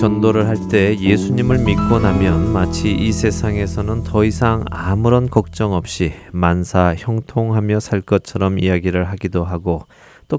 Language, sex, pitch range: Korean, male, 85-115 Hz